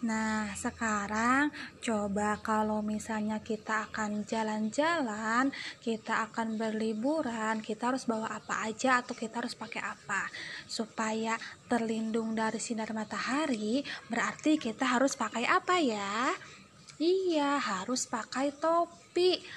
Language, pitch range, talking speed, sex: Indonesian, 230-315 Hz, 110 wpm, female